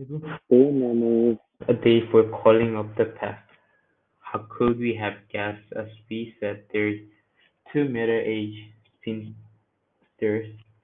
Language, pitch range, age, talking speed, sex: English, 105-115 Hz, 20-39, 105 wpm, male